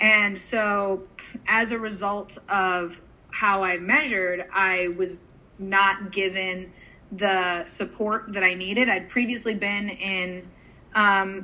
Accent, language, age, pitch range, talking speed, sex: American, English, 20-39, 185-215 Hz, 120 wpm, female